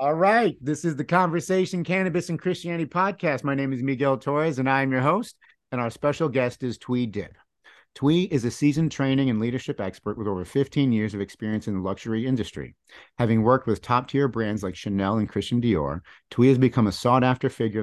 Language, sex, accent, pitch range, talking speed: English, male, American, 100-135 Hz, 205 wpm